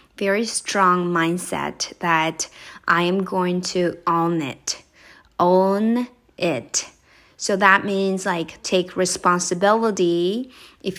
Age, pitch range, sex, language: 20-39, 170-200 Hz, female, Japanese